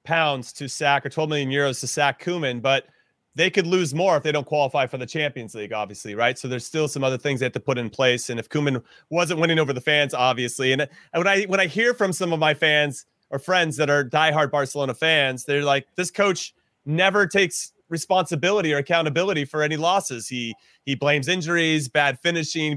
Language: English